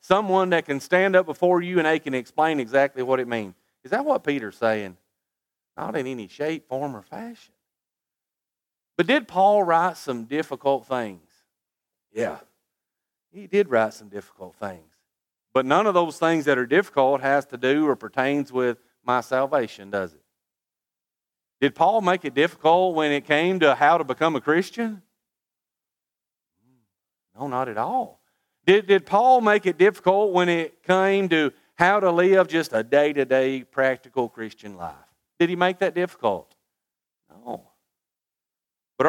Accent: American